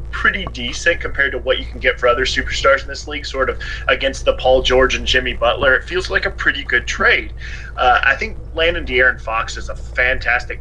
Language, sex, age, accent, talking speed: English, male, 20-39, American, 220 wpm